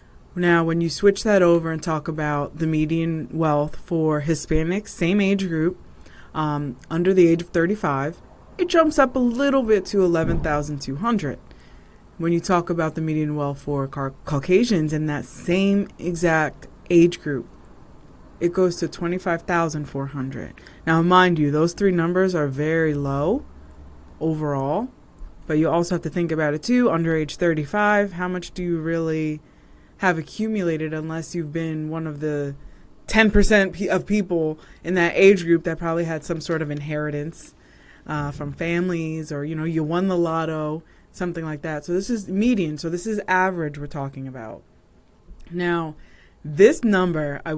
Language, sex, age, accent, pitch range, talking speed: English, female, 20-39, American, 150-180 Hz, 160 wpm